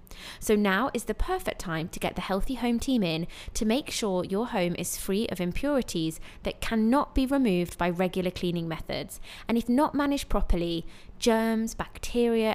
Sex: female